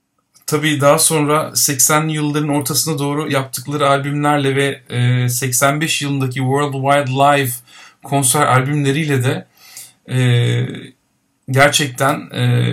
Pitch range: 130-145 Hz